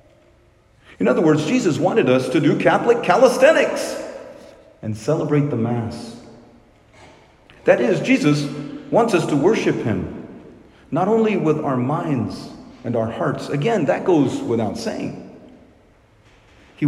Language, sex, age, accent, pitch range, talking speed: English, male, 50-69, American, 110-145 Hz, 130 wpm